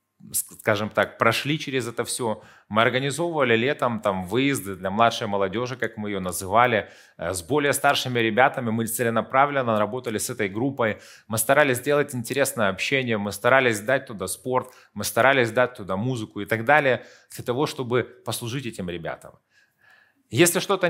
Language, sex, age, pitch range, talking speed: Russian, male, 30-49, 110-140 Hz, 155 wpm